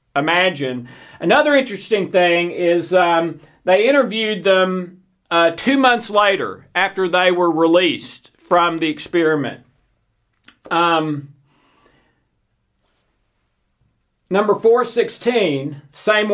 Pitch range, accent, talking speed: 150-200 Hz, American, 90 wpm